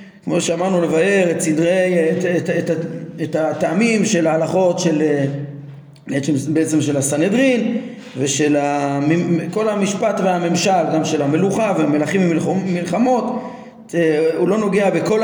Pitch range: 165-200 Hz